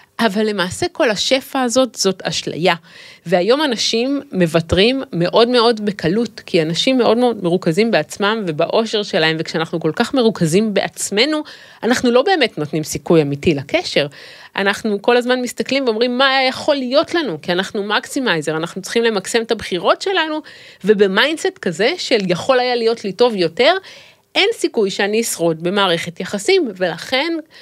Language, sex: Hebrew, female